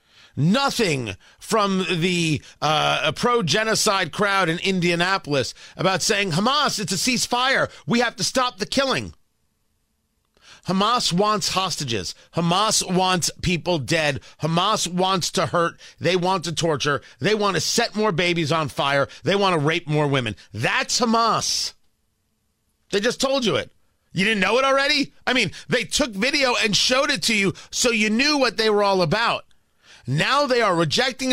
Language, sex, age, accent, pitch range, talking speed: English, male, 40-59, American, 165-255 Hz, 160 wpm